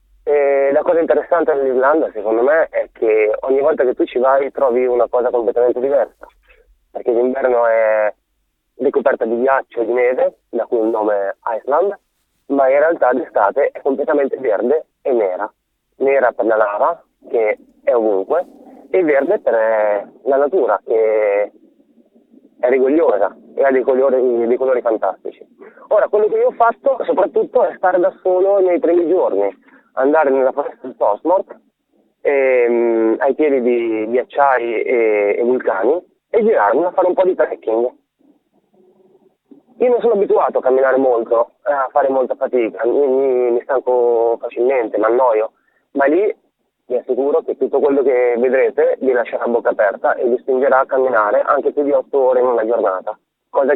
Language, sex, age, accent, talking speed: Italian, male, 30-49, native, 165 wpm